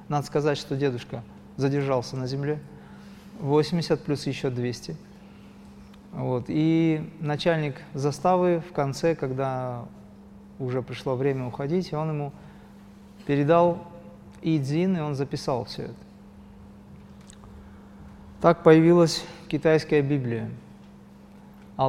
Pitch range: 130-175 Hz